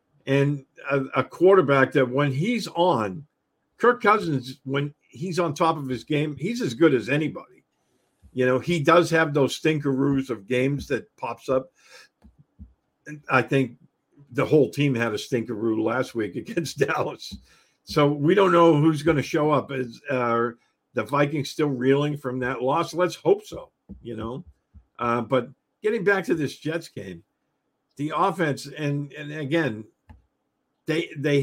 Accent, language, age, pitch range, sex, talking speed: American, English, 50-69, 125-155 Hz, male, 160 wpm